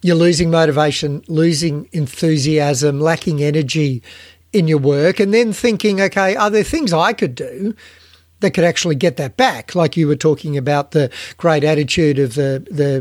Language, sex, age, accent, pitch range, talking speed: English, male, 50-69, Australian, 145-175 Hz, 170 wpm